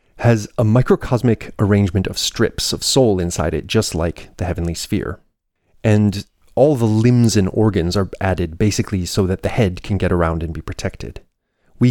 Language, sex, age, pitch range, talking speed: English, male, 30-49, 85-110 Hz, 175 wpm